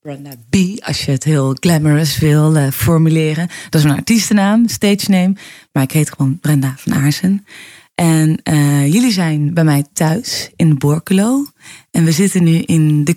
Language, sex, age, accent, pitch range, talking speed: Dutch, female, 20-39, Dutch, 150-195 Hz, 175 wpm